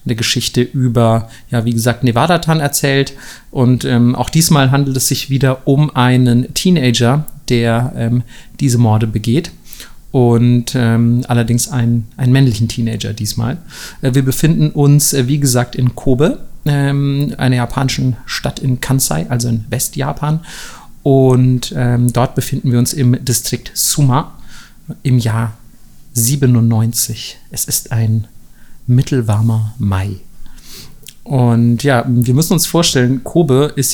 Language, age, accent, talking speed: German, 40-59, German, 130 wpm